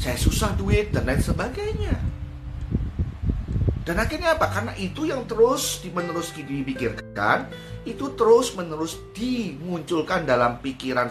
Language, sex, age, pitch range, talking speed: Indonesian, male, 30-49, 95-135 Hz, 120 wpm